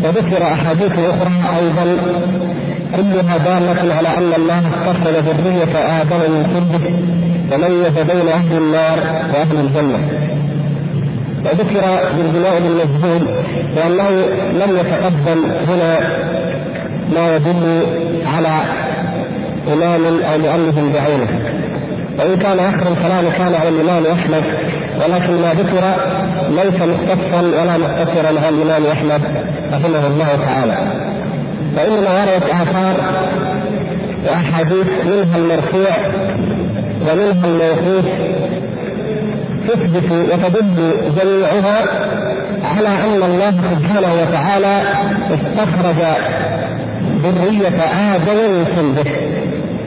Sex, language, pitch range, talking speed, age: male, Arabic, 160-185 Hz, 95 wpm, 50-69